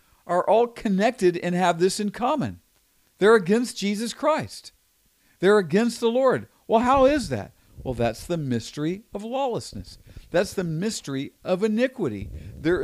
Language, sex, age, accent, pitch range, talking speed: English, male, 50-69, American, 145-210 Hz, 150 wpm